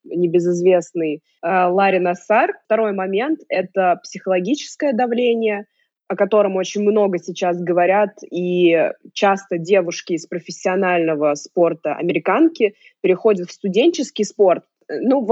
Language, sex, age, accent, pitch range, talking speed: Russian, female, 20-39, native, 180-220 Hz, 105 wpm